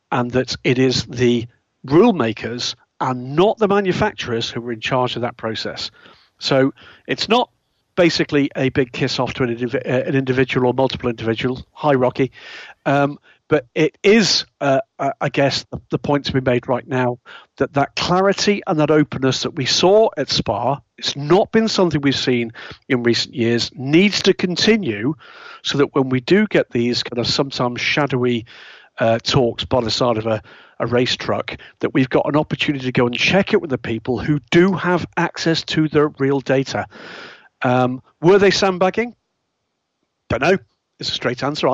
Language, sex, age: English, male, 50-69